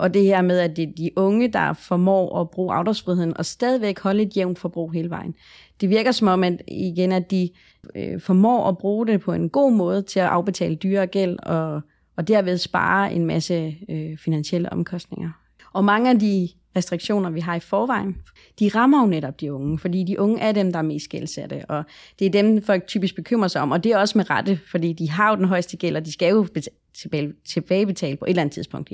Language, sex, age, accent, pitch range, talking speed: Danish, female, 30-49, native, 170-205 Hz, 225 wpm